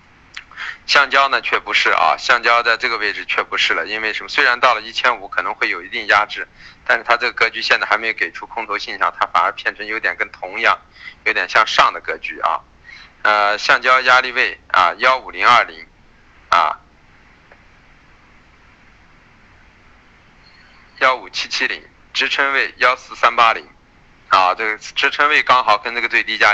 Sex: male